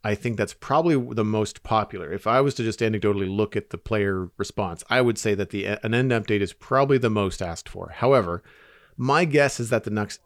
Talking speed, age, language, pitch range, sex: 220 wpm, 40-59, English, 95-120 Hz, male